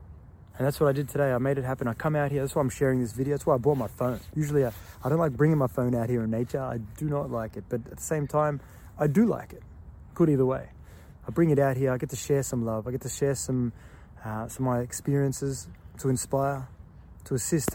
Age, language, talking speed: 20-39, English, 270 wpm